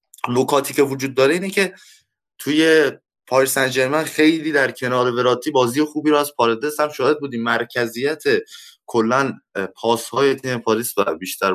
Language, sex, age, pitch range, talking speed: Persian, male, 20-39, 115-140 Hz, 150 wpm